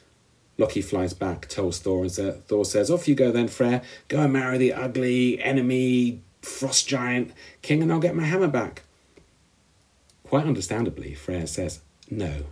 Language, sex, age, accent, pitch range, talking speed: English, male, 50-69, British, 85-130 Hz, 165 wpm